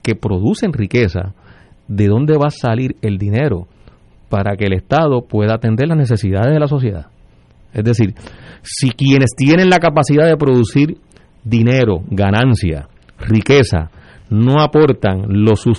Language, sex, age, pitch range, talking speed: Spanish, male, 40-59, 110-150 Hz, 135 wpm